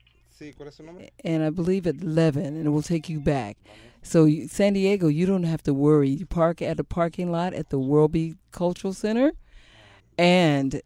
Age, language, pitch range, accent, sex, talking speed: 50-69, English, 140-175 Hz, American, female, 170 wpm